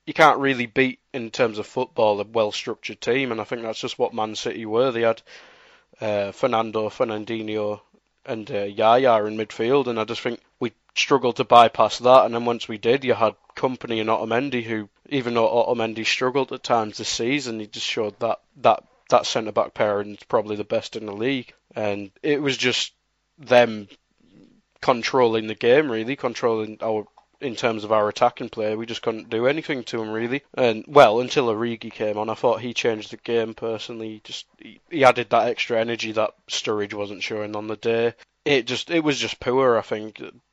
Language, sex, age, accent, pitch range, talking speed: English, male, 20-39, British, 105-120 Hz, 195 wpm